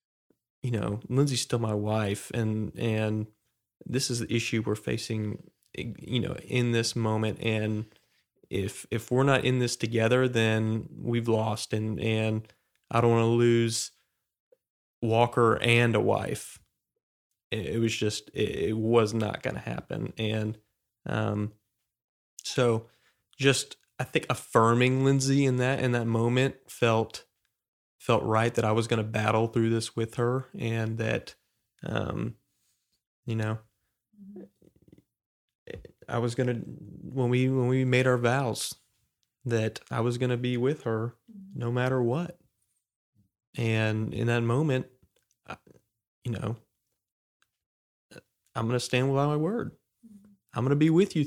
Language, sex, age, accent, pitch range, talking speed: English, male, 30-49, American, 110-125 Hz, 145 wpm